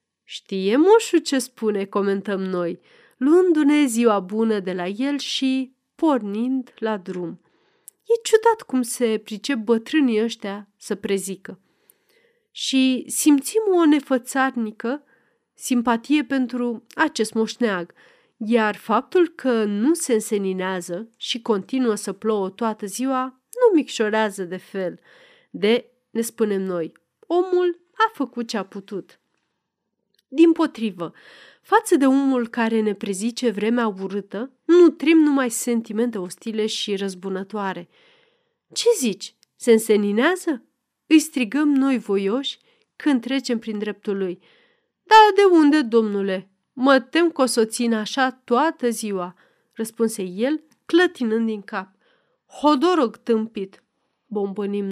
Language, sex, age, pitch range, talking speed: Romanian, female, 30-49, 210-300 Hz, 120 wpm